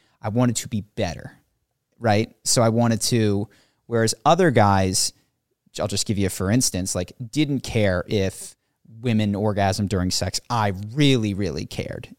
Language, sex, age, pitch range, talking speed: English, male, 30-49, 100-120 Hz, 160 wpm